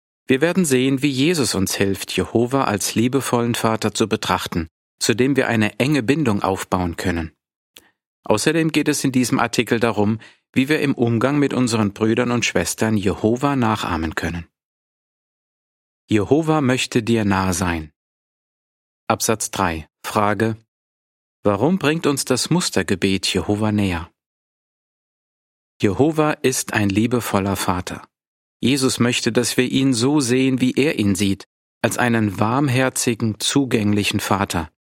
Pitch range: 100-130 Hz